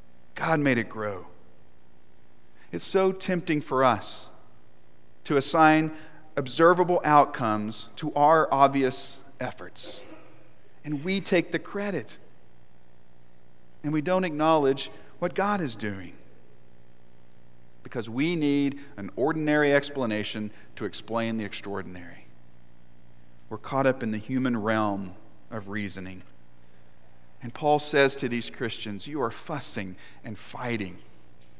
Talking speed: 115 wpm